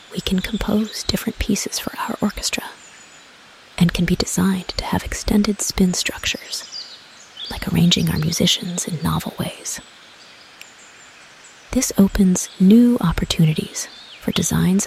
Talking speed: 120 wpm